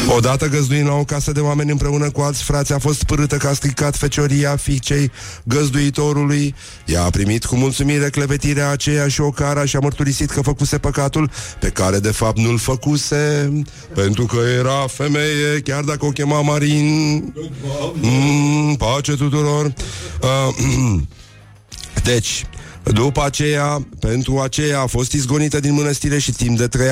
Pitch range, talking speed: 120-145 Hz, 155 wpm